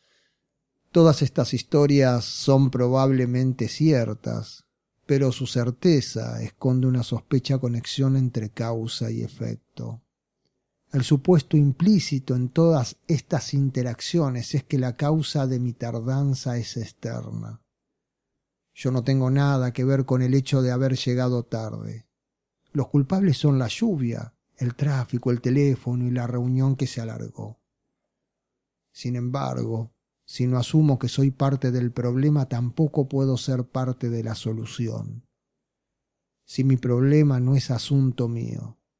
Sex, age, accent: male, 40-59, Argentinian